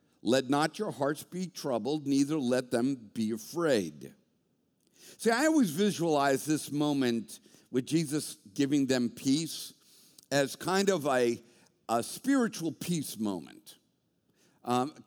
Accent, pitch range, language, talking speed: American, 130-180 Hz, English, 125 wpm